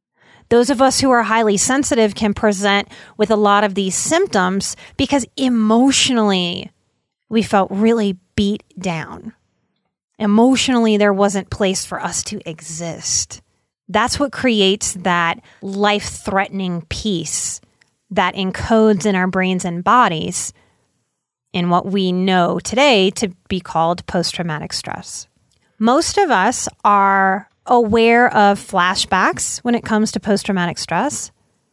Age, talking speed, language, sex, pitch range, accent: 30-49, 125 wpm, English, female, 190-240 Hz, American